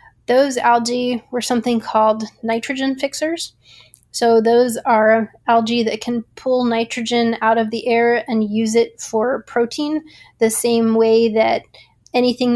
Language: English